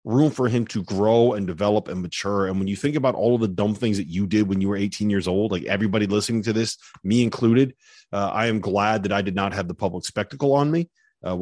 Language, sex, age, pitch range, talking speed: English, male, 30-49, 95-120 Hz, 265 wpm